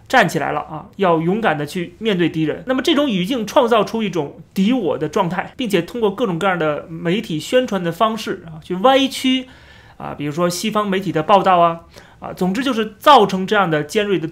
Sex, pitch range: male, 170-230 Hz